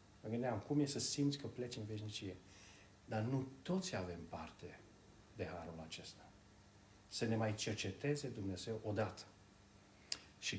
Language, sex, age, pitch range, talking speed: Romanian, male, 40-59, 100-150 Hz, 140 wpm